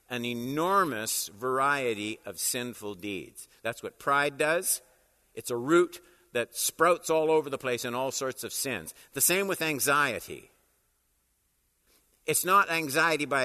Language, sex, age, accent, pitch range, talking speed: English, male, 50-69, American, 125-165 Hz, 145 wpm